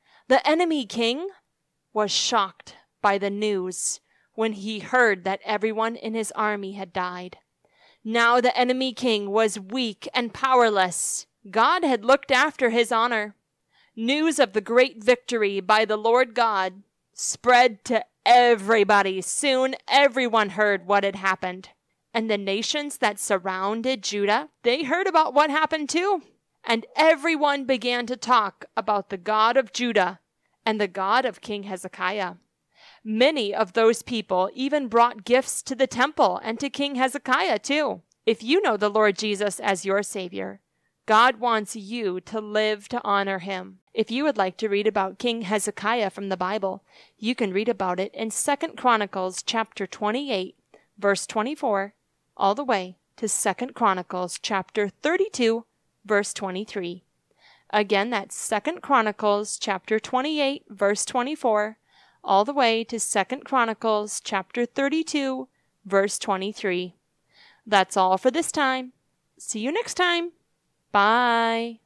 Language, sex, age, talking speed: English, female, 20-39, 150 wpm